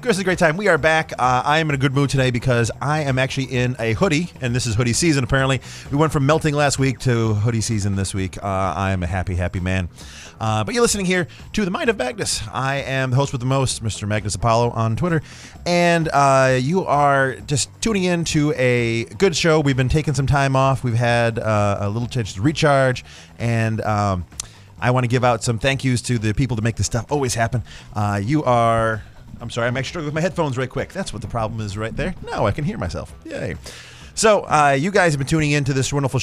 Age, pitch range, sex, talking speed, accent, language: 30-49, 110-155 Hz, male, 245 wpm, American, English